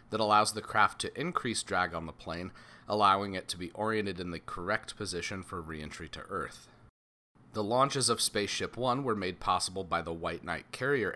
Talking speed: 195 wpm